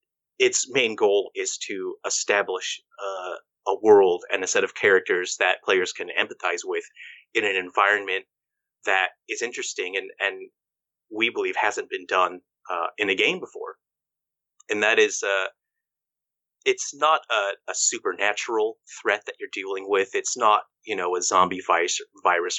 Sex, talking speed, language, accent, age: male, 155 wpm, English, American, 30-49